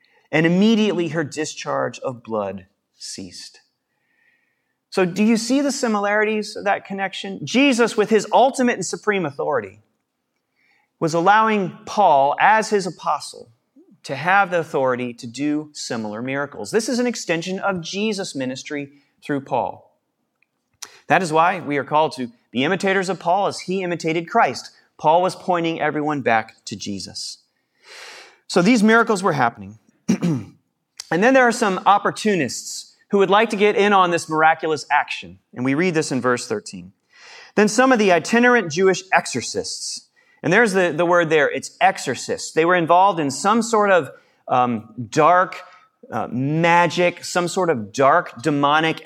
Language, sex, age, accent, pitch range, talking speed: English, male, 30-49, American, 150-215 Hz, 155 wpm